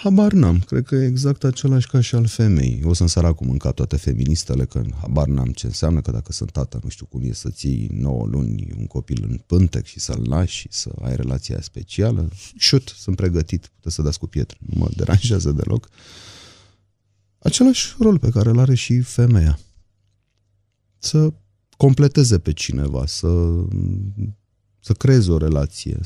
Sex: male